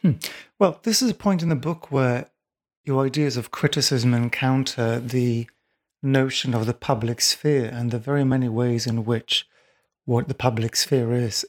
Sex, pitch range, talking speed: male, 120-135 Hz, 170 wpm